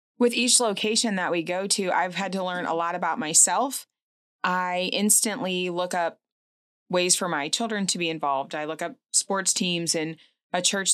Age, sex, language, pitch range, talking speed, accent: 20-39, female, English, 160-190 Hz, 185 wpm, American